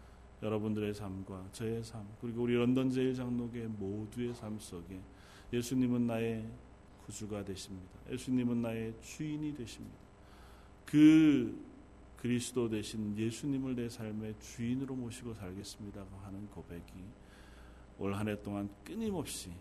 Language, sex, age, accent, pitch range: Korean, male, 40-59, native, 100-120 Hz